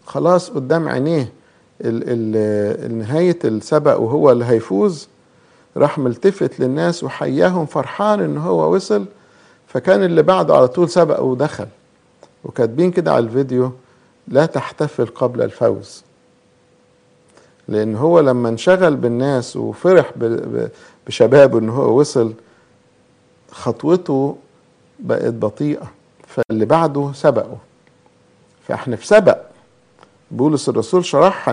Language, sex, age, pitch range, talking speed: English, male, 50-69, 115-155 Hz, 105 wpm